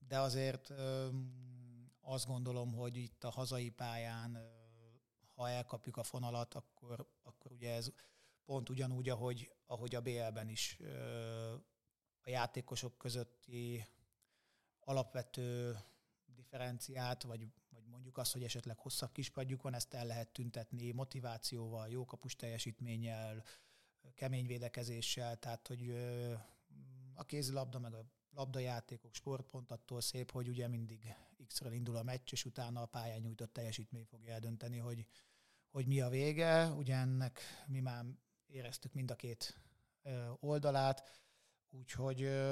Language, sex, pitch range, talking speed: Hungarian, male, 115-130 Hz, 125 wpm